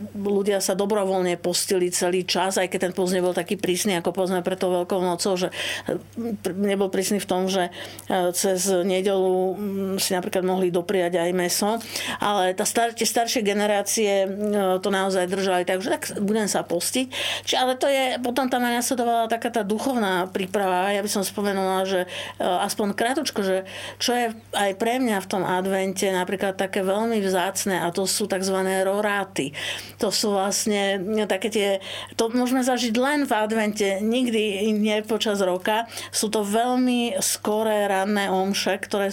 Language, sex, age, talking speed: Slovak, female, 50-69, 165 wpm